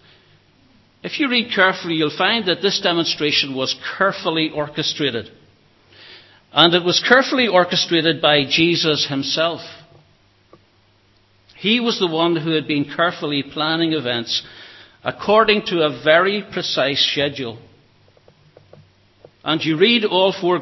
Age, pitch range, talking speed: 60-79, 130-175 Hz, 120 wpm